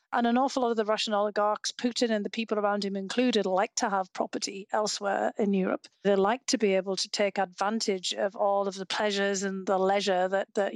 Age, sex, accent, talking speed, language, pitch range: 40-59, female, British, 225 wpm, English, 200-240 Hz